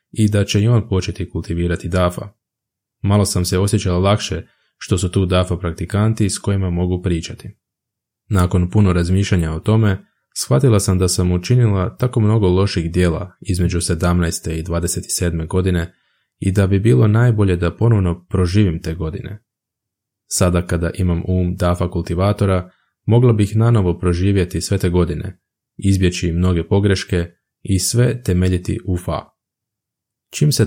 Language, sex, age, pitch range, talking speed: Croatian, male, 20-39, 90-105 Hz, 145 wpm